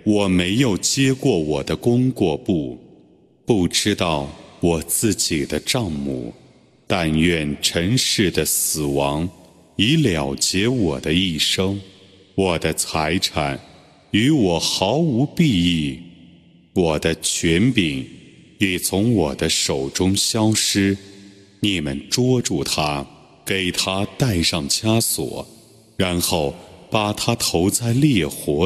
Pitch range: 80-110 Hz